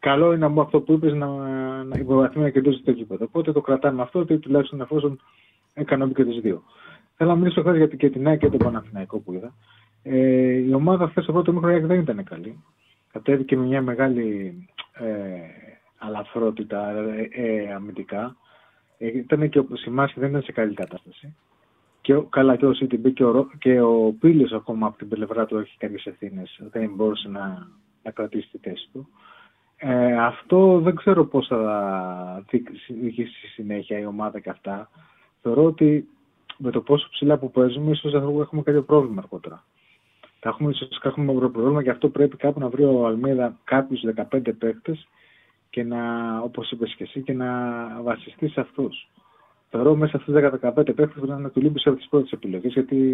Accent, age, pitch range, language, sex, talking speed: native, 30-49, 115-145 Hz, Greek, male, 170 wpm